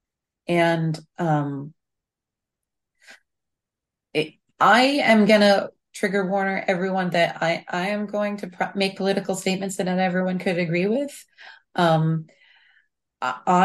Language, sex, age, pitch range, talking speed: English, female, 30-49, 155-190 Hz, 125 wpm